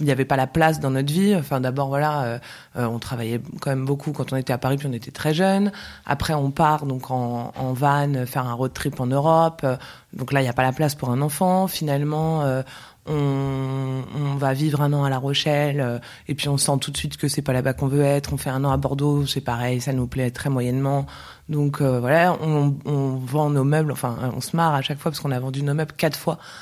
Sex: female